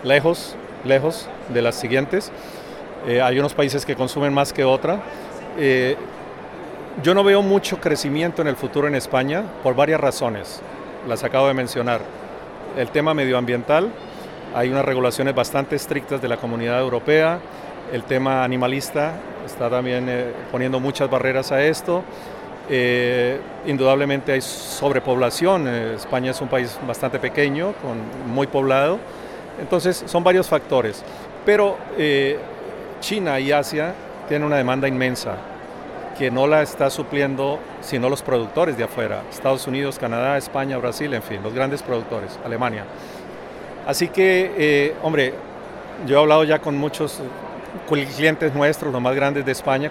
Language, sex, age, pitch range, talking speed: Spanish, male, 40-59, 130-150 Hz, 145 wpm